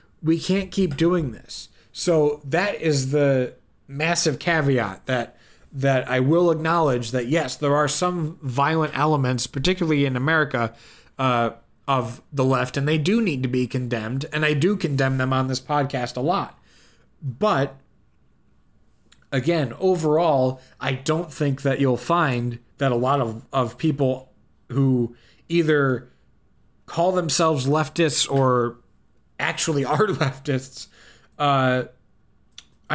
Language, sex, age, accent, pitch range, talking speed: English, male, 30-49, American, 120-155 Hz, 130 wpm